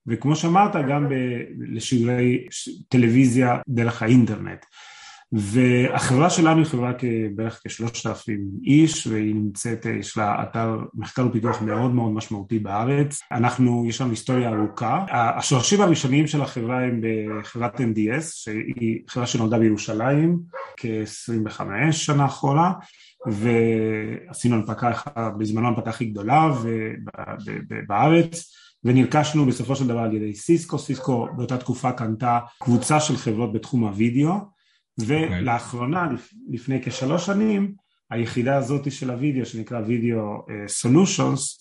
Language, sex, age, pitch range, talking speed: Hebrew, male, 30-49, 110-135 Hz, 125 wpm